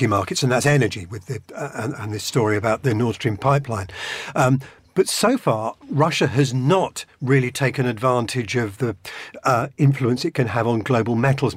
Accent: British